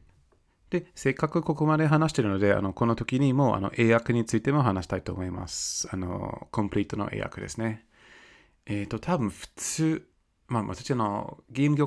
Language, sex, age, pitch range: Japanese, male, 20-39, 100-135 Hz